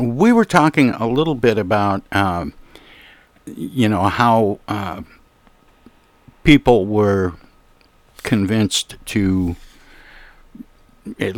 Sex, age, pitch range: male, 60-79, 95-120 Hz